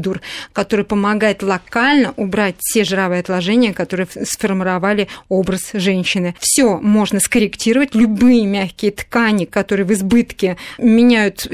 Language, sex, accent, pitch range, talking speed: Russian, female, native, 190-235 Hz, 110 wpm